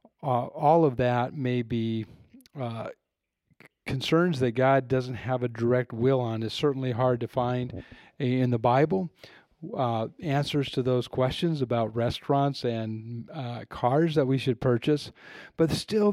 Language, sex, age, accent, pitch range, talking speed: English, male, 40-59, American, 120-140 Hz, 150 wpm